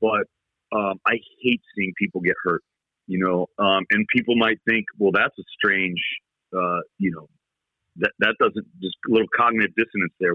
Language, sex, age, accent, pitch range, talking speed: English, male, 40-59, American, 100-120 Hz, 180 wpm